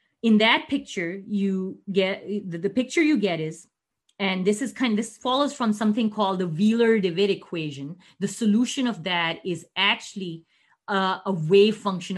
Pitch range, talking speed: 170-210 Hz, 170 wpm